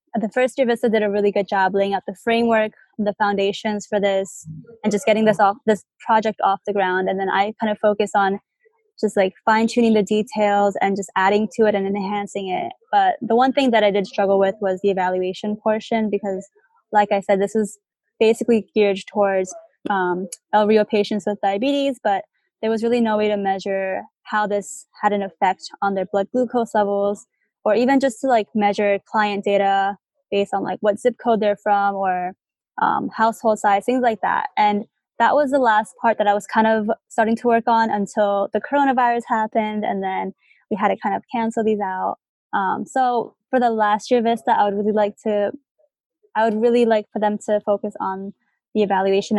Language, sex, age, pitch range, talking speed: English, female, 20-39, 200-230 Hz, 205 wpm